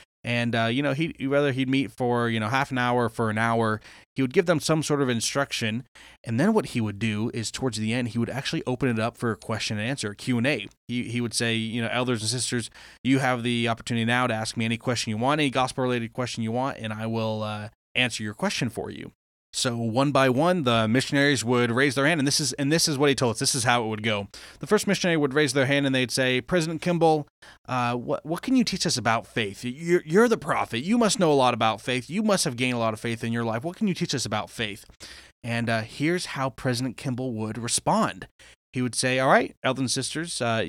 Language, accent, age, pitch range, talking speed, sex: English, American, 20-39, 115-140 Hz, 260 wpm, male